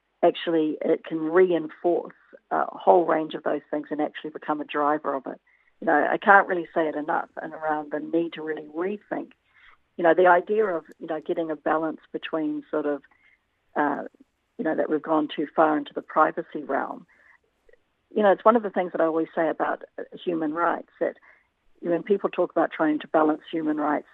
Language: English